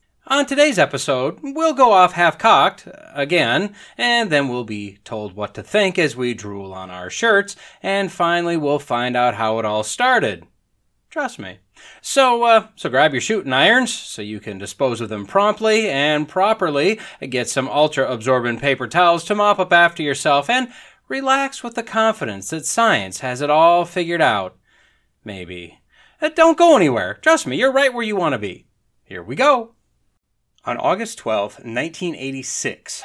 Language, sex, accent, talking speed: English, male, American, 165 wpm